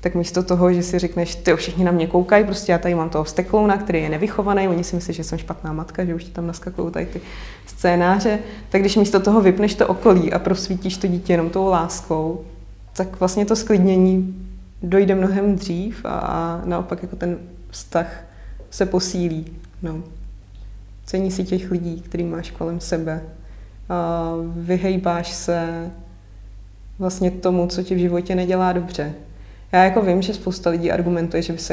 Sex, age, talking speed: female, 20-39, 180 wpm